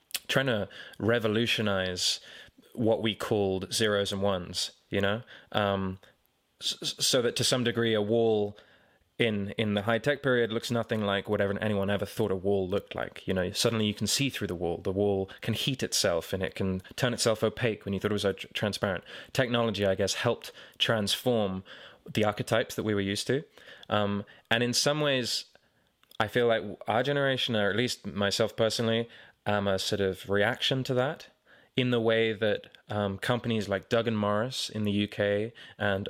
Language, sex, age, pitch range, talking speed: English, male, 20-39, 100-115 Hz, 185 wpm